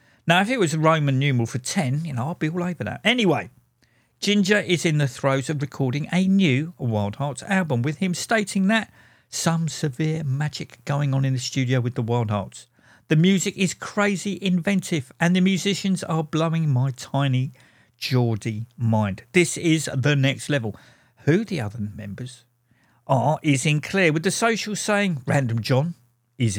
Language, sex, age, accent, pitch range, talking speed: English, male, 50-69, British, 120-170 Hz, 180 wpm